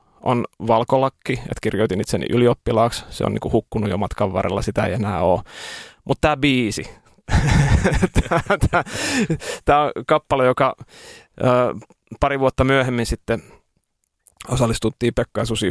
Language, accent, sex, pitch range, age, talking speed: Finnish, native, male, 105-125 Hz, 30-49, 120 wpm